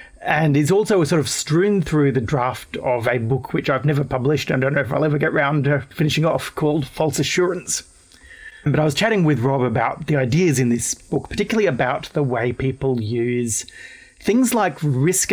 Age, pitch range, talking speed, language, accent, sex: 40-59, 130-160 Hz, 205 wpm, English, Australian, male